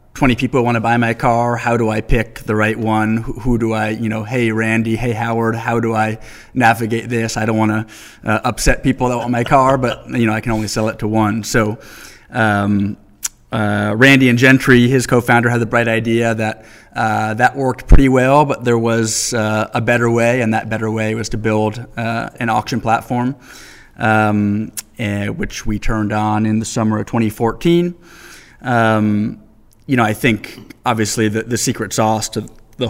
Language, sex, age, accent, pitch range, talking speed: English, male, 20-39, American, 110-120 Hz, 195 wpm